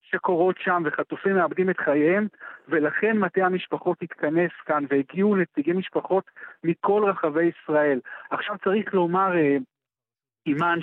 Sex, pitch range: male, 160-195 Hz